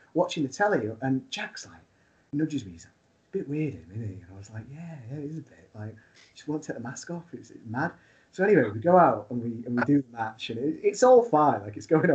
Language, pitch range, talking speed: English, 120-165 Hz, 270 wpm